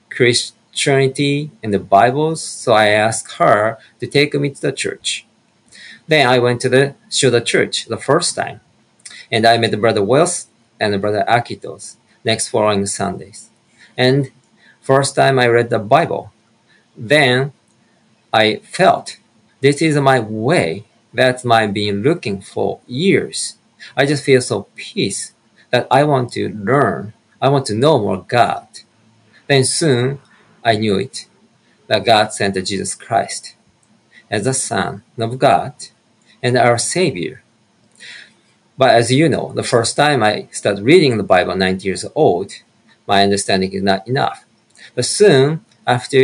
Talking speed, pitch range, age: 145 wpm, 105-135 Hz, 40-59